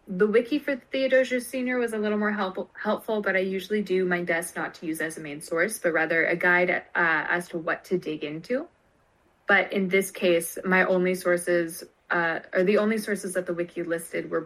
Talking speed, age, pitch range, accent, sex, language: 215 wpm, 20-39, 175-215 Hz, American, female, English